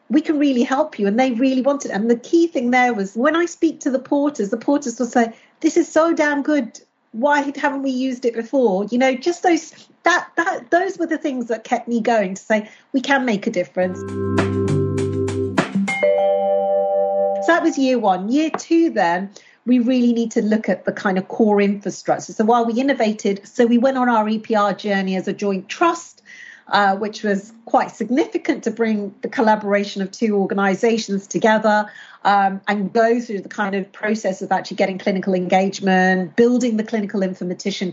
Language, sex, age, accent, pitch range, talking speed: English, female, 40-59, British, 195-260 Hz, 190 wpm